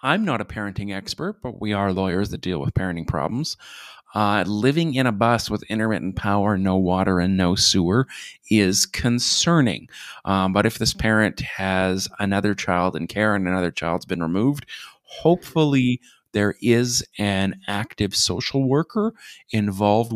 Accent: American